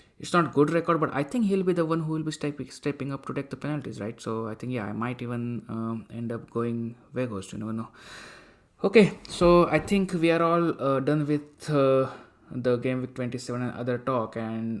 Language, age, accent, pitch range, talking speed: English, 20-39, Indian, 115-135 Hz, 230 wpm